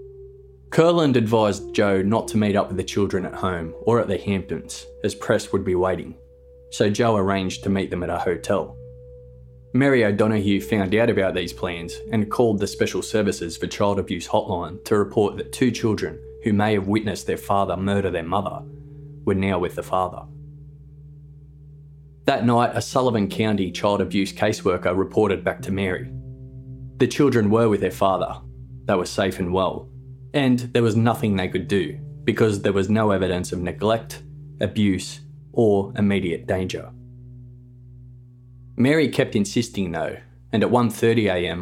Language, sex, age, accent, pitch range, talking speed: English, male, 20-39, Australian, 90-120 Hz, 165 wpm